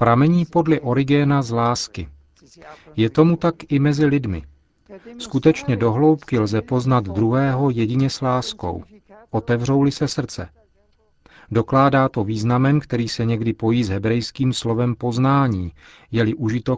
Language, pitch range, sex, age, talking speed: Czech, 105-135 Hz, male, 40-59, 125 wpm